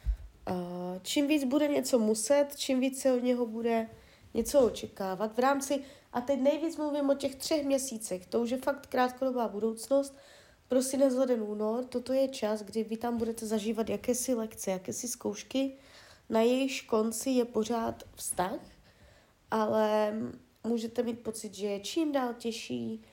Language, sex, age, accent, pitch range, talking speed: Czech, female, 30-49, native, 205-250 Hz, 155 wpm